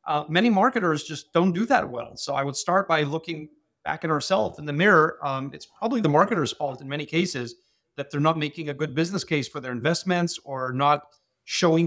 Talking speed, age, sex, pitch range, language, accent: 215 wpm, 30-49, male, 145-175 Hz, English, American